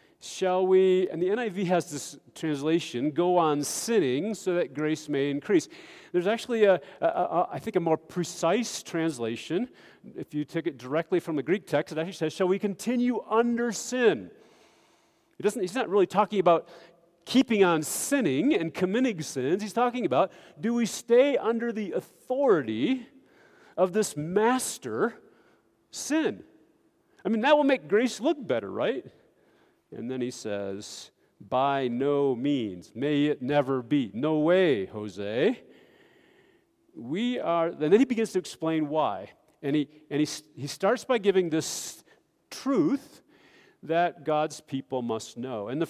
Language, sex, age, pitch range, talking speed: English, male, 40-59, 145-230 Hz, 155 wpm